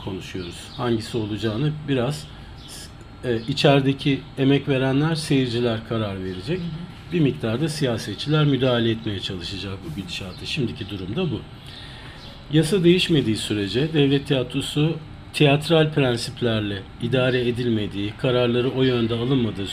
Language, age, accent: Turkish, 50-69, native